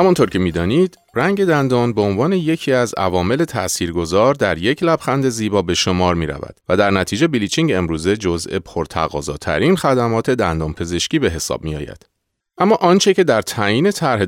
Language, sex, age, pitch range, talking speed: Persian, male, 30-49, 90-145 Hz, 155 wpm